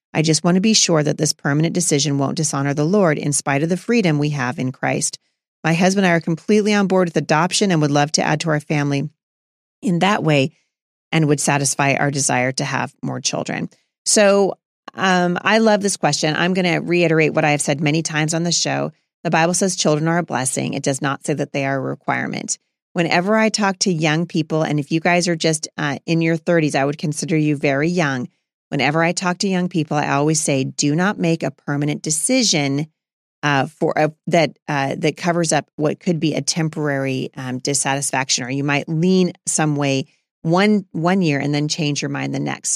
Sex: female